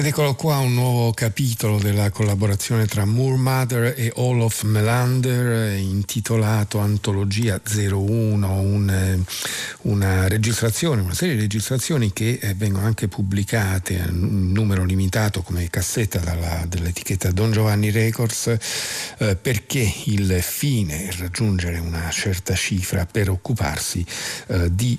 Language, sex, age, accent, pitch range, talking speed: Italian, male, 50-69, native, 95-110 Hz, 125 wpm